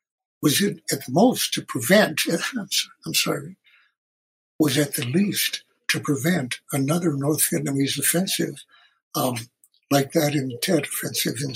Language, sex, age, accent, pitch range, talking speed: English, male, 60-79, American, 145-175 Hz, 135 wpm